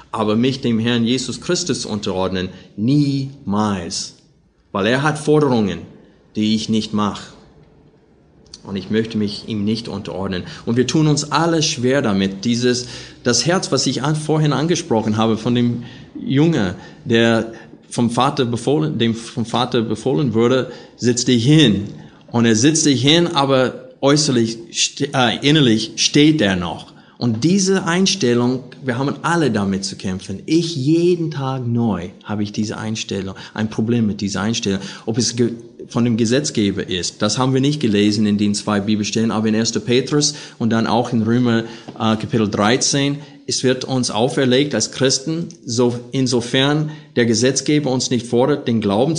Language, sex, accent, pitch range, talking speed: German, male, German, 110-140 Hz, 155 wpm